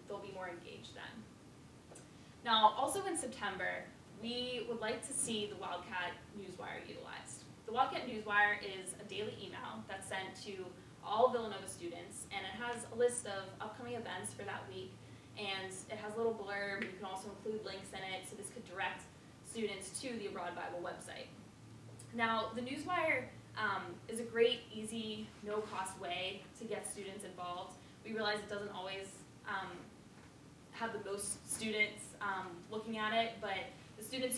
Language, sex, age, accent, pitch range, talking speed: English, female, 10-29, American, 190-230 Hz, 165 wpm